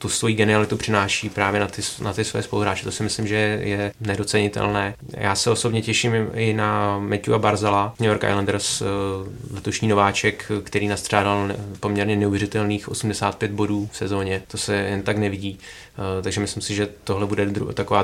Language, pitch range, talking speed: Czech, 100-105 Hz, 165 wpm